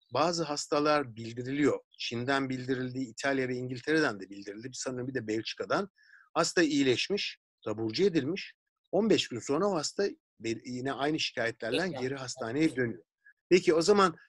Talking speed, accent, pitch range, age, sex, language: 135 wpm, native, 120-170 Hz, 50-69, male, Turkish